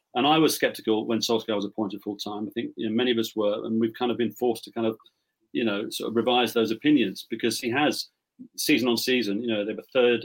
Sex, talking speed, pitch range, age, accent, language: male, 265 wpm, 110-125 Hz, 40-59, British, English